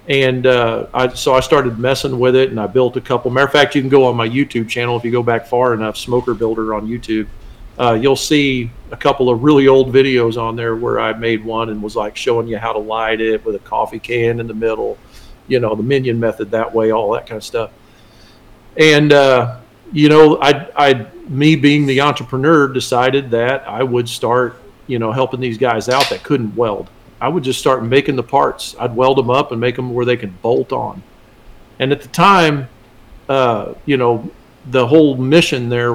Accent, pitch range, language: American, 115-135 Hz, English